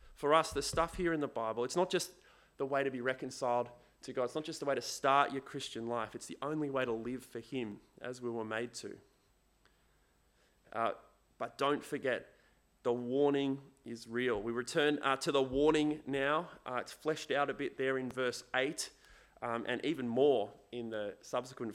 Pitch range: 115-140 Hz